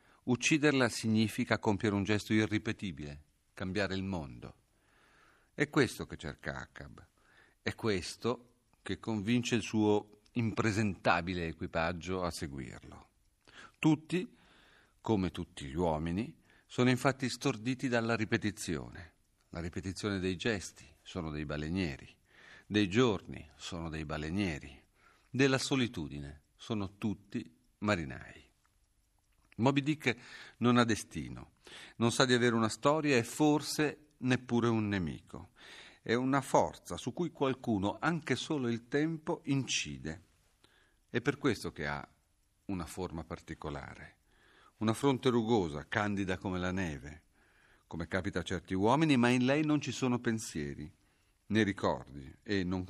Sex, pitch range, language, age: male, 85-120 Hz, Italian, 50-69